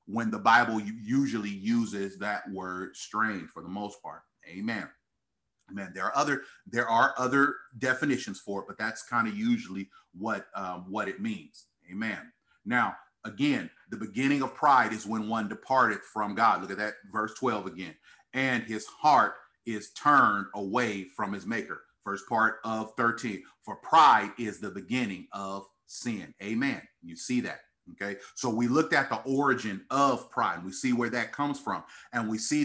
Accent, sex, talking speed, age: American, male, 175 wpm, 40-59